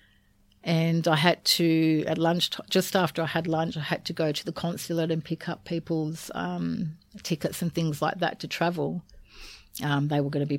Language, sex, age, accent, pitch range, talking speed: English, female, 40-59, Australian, 145-170 Hz, 205 wpm